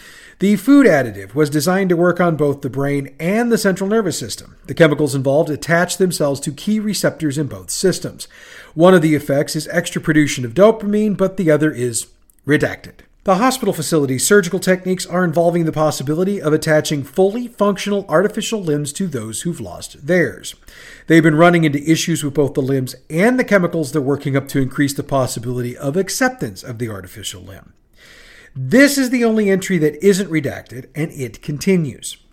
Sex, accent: male, American